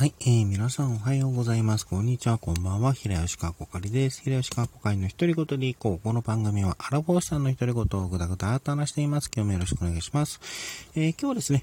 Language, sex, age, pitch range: Japanese, male, 40-59, 95-145 Hz